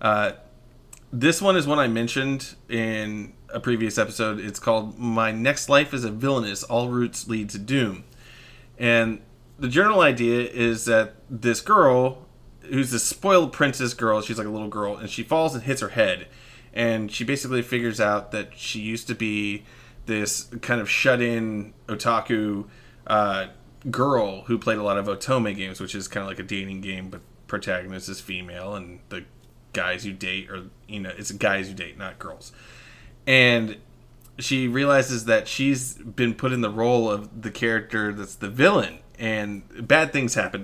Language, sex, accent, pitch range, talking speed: English, male, American, 105-125 Hz, 175 wpm